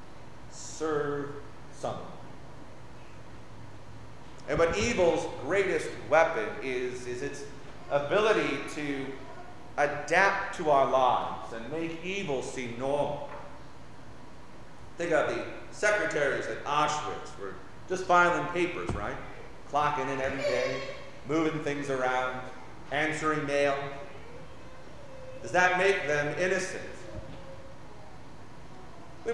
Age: 40-59